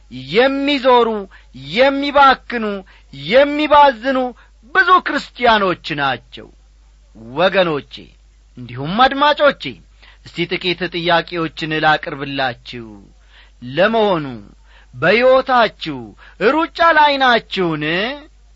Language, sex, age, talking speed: Amharic, male, 40-59, 55 wpm